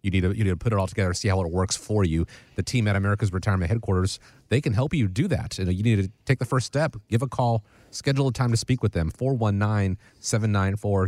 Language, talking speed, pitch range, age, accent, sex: English, 275 wpm, 90-115 Hz, 30-49, American, male